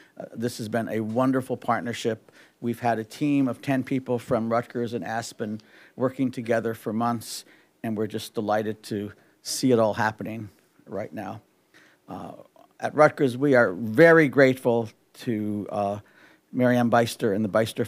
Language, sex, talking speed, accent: English, male, 160 wpm, American